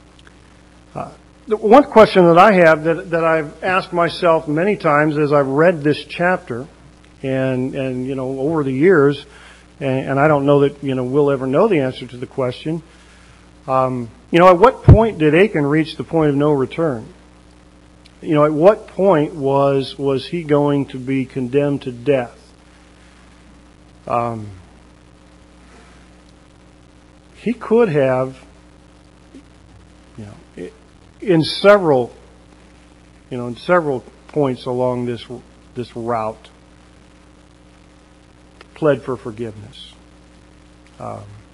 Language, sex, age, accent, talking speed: English, male, 50-69, American, 125 wpm